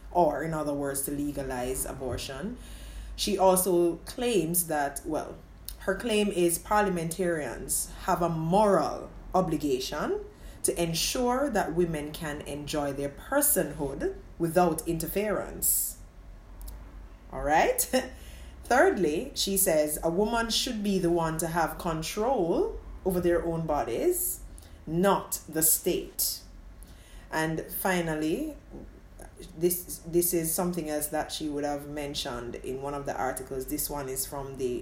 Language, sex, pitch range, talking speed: English, female, 140-185 Hz, 125 wpm